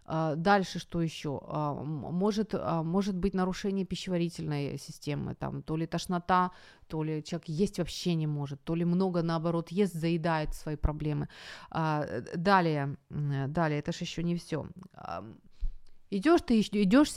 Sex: female